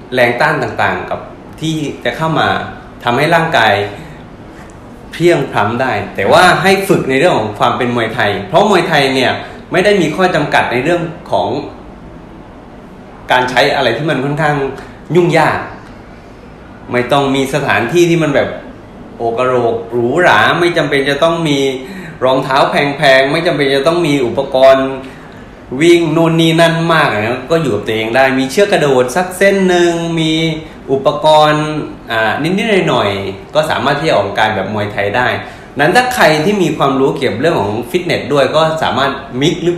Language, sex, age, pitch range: Thai, male, 20-39, 120-165 Hz